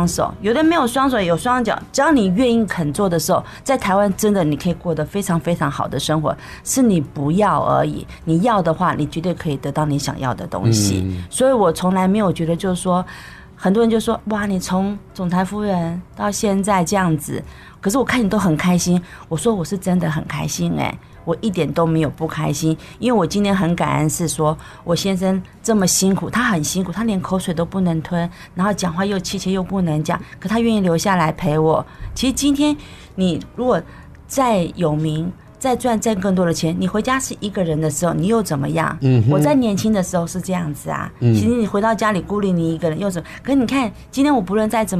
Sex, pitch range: female, 160-205 Hz